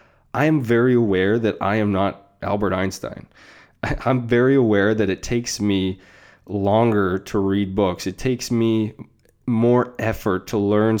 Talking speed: 155 wpm